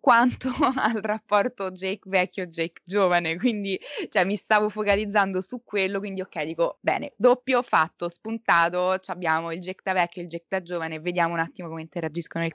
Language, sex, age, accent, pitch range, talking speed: Italian, female, 20-39, native, 165-200 Hz, 170 wpm